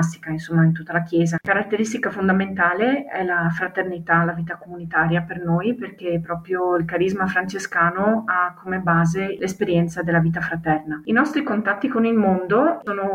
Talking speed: 155 wpm